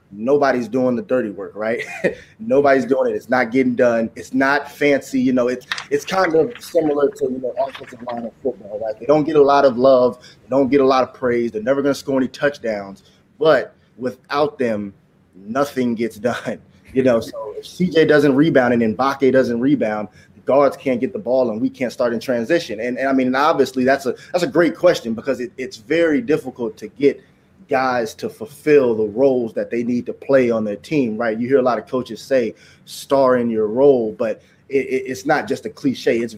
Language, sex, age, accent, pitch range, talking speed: English, male, 20-39, American, 120-140 Hz, 220 wpm